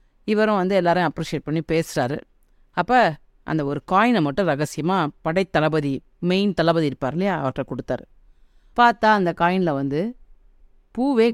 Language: Tamil